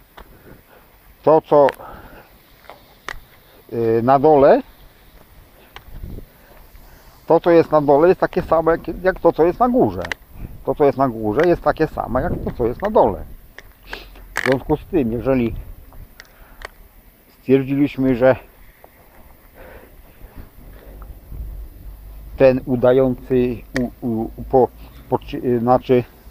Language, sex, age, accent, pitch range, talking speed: English, male, 50-69, Polish, 95-145 Hz, 95 wpm